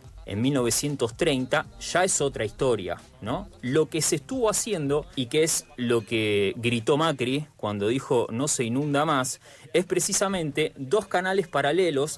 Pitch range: 120-165 Hz